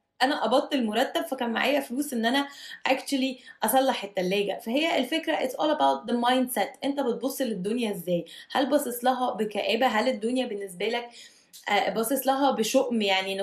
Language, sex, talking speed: Arabic, female, 155 wpm